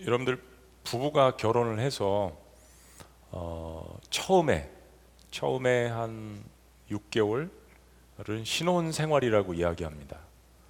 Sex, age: male, 40-59